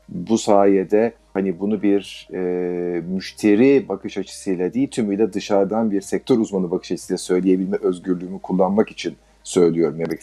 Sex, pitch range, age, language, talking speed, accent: male, 95-115 Hz, 50-69, Turkish, 135 wpm, native